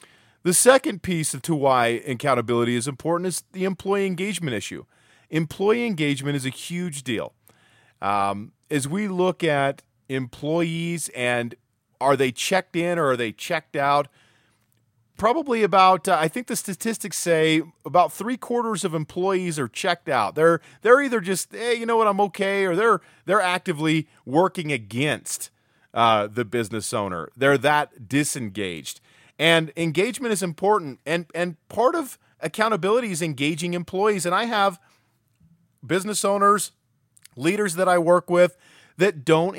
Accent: American